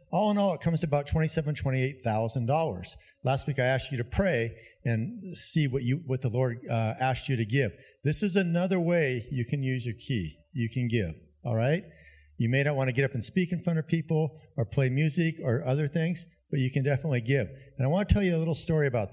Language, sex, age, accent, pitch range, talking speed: English, male, 50-69, American, 115-155 Hz, 240 wpm